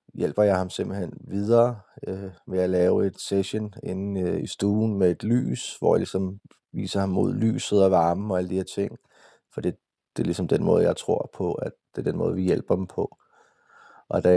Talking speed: 220 wpm